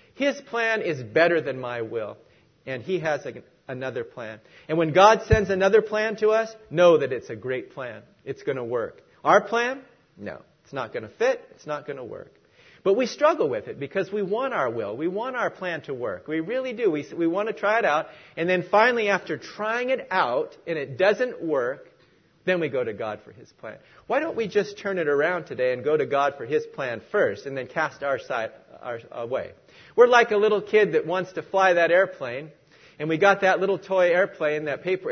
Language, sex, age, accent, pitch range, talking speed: English, male, 40-59, American, 170-255 Hz, 220 wpm